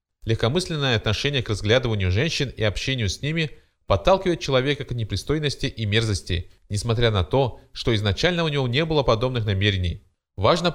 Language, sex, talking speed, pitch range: Russian, male, 150 wpm, 105-145 Hz